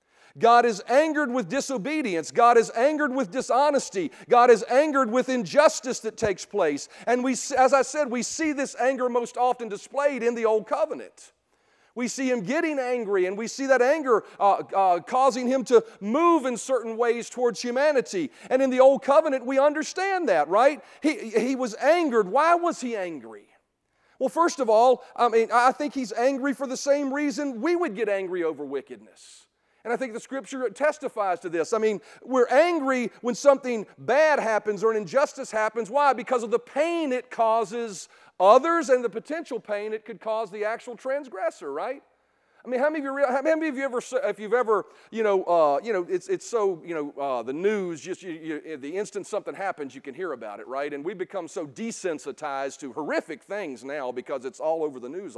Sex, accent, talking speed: male, American, 200 wpm